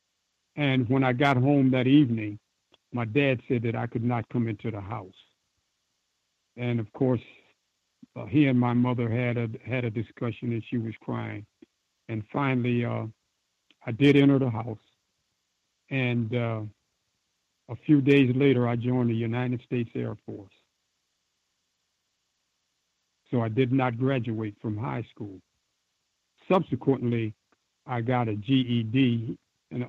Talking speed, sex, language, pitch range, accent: 140 wpm, male, English, 110-135 Hz, American